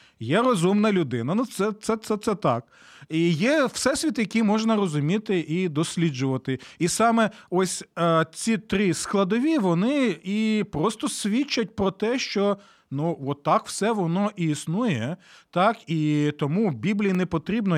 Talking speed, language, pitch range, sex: 150 wpm, Ukrainian, 145-195 Hz, male